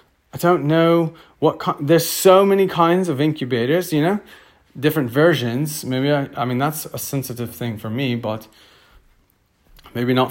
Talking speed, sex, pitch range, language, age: 155 wpm, male, 125-165 Hz, English, 30-49